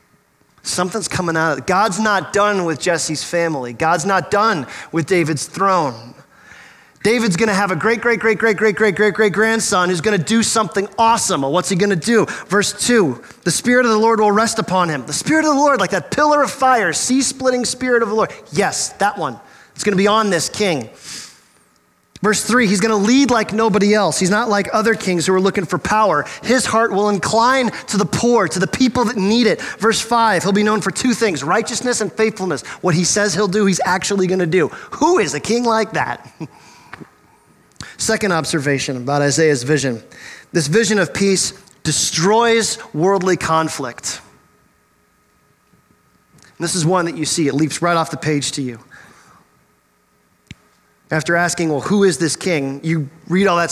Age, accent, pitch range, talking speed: 30-49, American, 165-225 Hz, 185 wpm